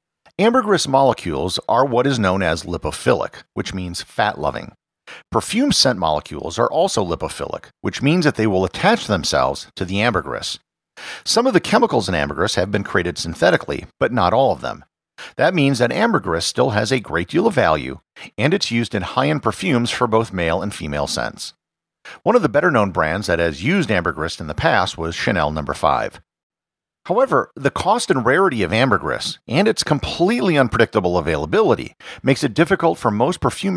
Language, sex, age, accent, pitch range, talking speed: English, male, 50-69, American, 90-140 Hz, 175 wpm